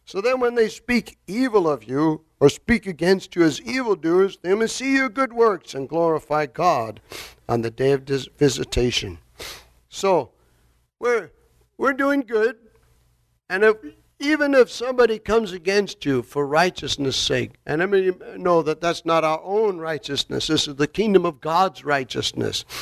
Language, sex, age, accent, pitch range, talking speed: English, male, 60-79, American, 145-205 Hz, 170 wpm